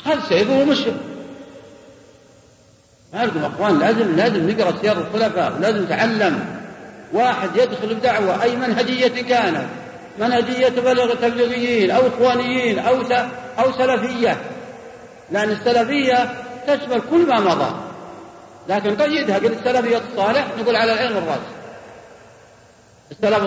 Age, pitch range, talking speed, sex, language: 50-69, 210-260 Hz, 115 wpm, male, Arabic